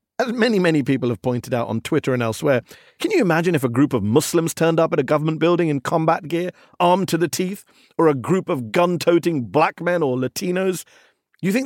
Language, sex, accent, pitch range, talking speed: English, male, British, 145-190 Hz, 220 wpm